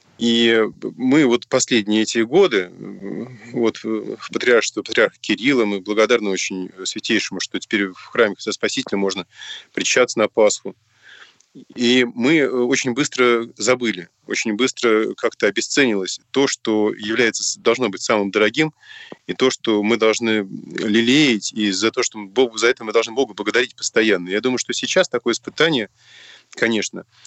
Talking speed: 145 wpm